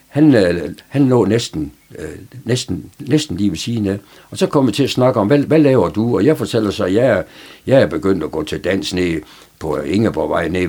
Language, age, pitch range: Danish, 60-79, 100-135 Hz